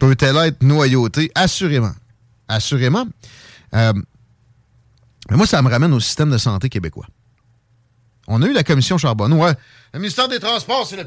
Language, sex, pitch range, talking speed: French, male, 115-150 Hz, 155 wpm